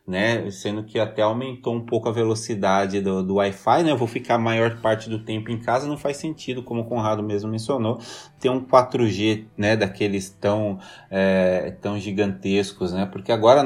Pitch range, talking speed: 100-120 Hz, 185 wpm